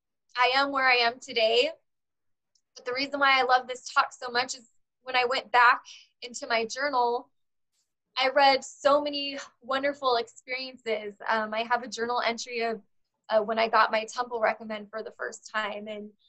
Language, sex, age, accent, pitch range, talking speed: English, female, 20-39, American, 225-260 Hz, 180 wpm